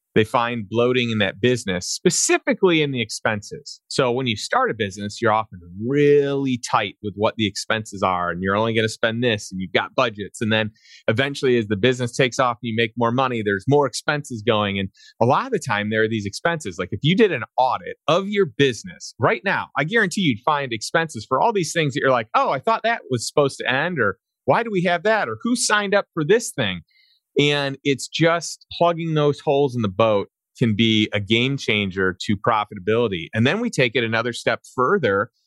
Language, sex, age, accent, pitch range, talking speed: English, male, 30-49, American, 110-150 Hz, 220 wpm